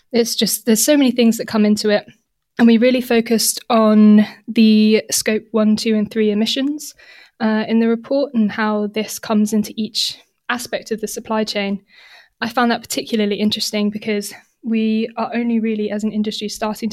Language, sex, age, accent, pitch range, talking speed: English, female, 20-39, British, 210-230 Hz, 180 wpm